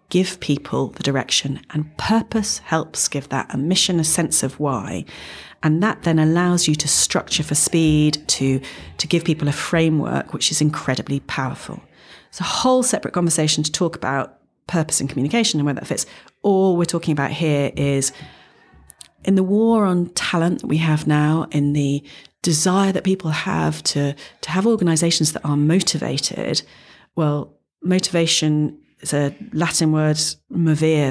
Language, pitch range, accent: English, 145-170 Hz, British